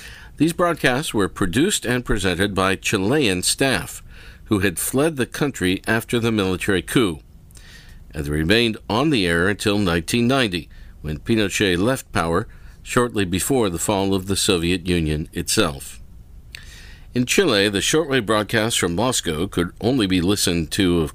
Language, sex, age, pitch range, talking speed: English, male, 50-69, 85-115 Hz, 150 wpm